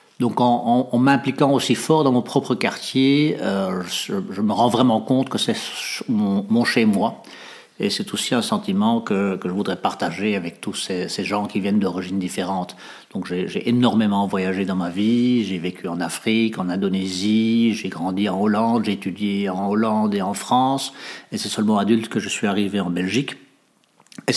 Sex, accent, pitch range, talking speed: male, French, 100-125 Hz, 190 wpm